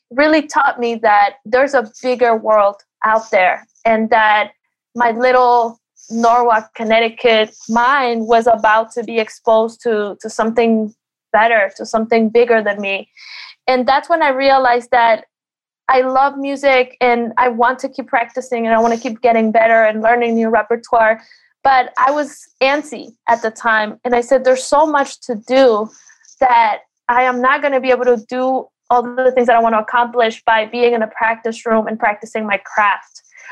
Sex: female